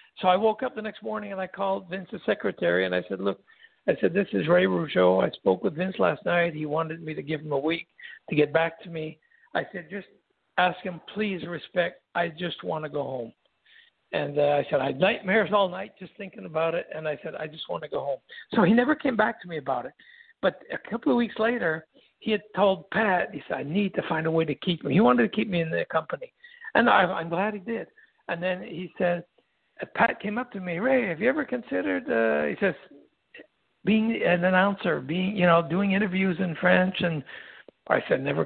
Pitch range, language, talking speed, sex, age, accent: 170-220 Hz, English, 235 wpm, male, 60-79, American